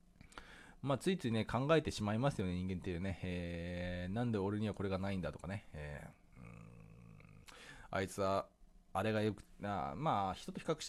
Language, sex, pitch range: Japanese, male, 90-120 Hz